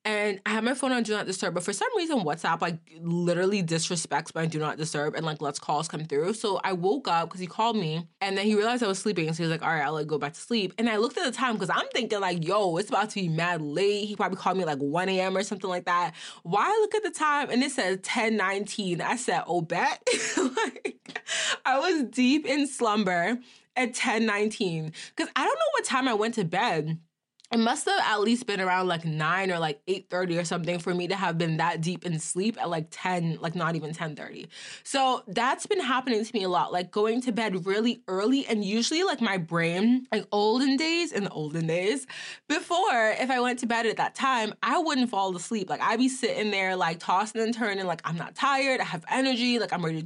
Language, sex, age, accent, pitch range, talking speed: English, female, 20-39, American, 175-250 Hz, 240 wpm